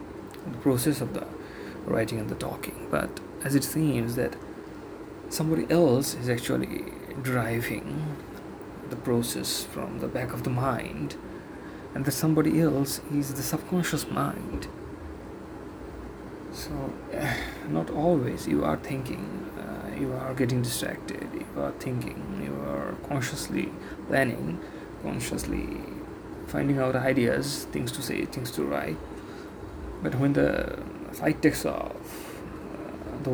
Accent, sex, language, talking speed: Indian, male, English, 125 wpm